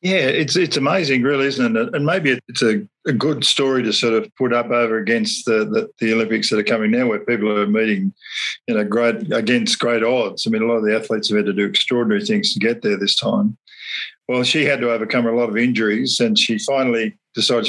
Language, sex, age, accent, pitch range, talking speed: English, male, 50-69, Australian, 115-135 Hz, 240 wpm